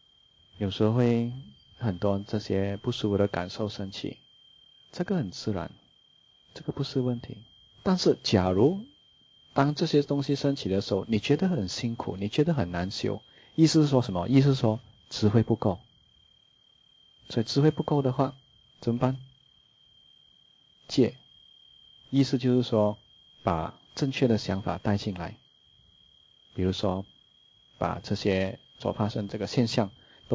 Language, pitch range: English, 100-130 Hz